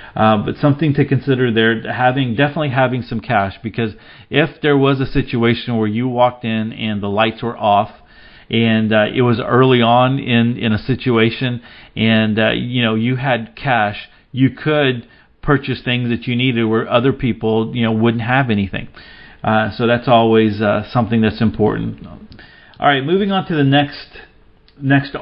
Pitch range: 115-140 Hz